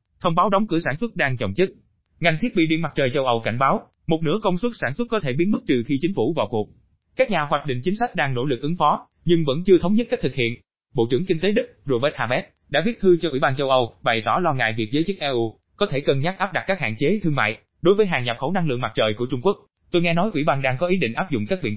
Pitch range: 125-185 Hz